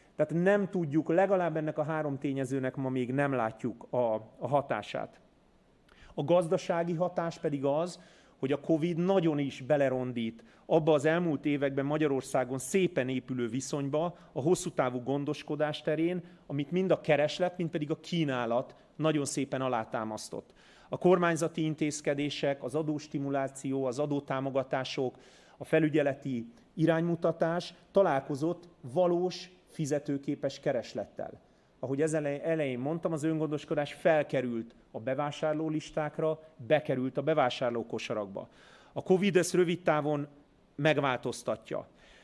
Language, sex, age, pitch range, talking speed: Hungarian, male, 30-49, 140-165 Hz, 120 wpm